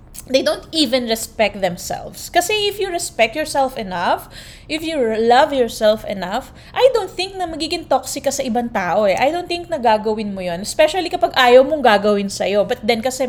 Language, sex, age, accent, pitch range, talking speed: Filipino, female, 20-39, native, 220-295 Hz, 190 wpm